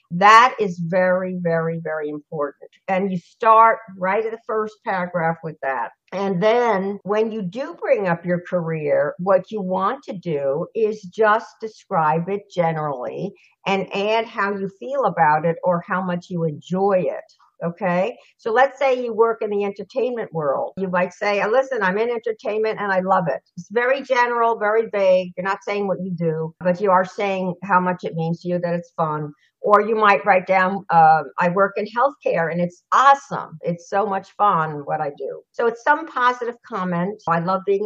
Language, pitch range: English, 170-225 Hz